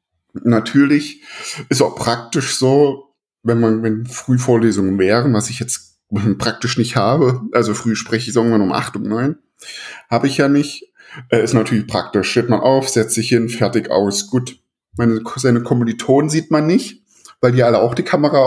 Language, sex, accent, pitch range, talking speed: German, male, German, 110-135 Hz, 170 wpm